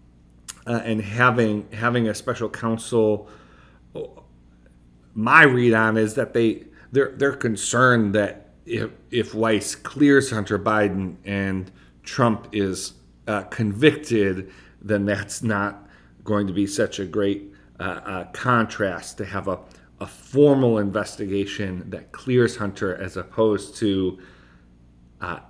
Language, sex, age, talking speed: English, male, 40-59, 125 wpm